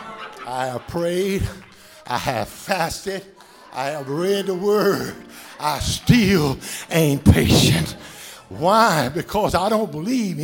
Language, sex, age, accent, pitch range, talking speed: English, male, 50-69, American, 180-260 Hz, 115 wpm